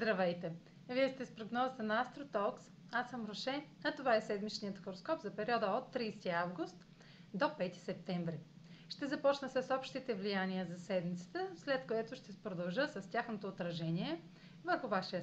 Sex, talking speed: female, 155 wpm